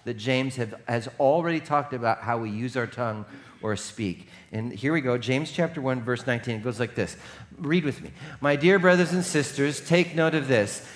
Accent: American